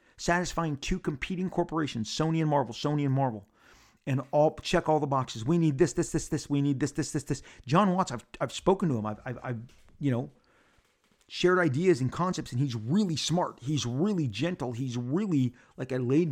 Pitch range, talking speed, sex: 135-170 Hz, 205 wpm, male